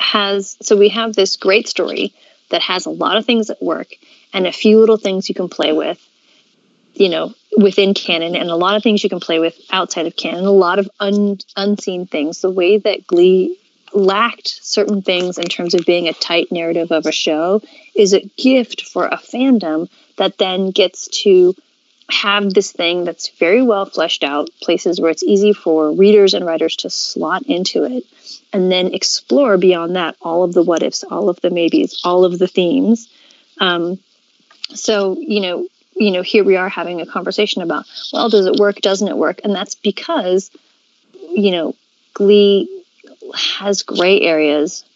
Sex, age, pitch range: female, 30-49, 180-225 Hz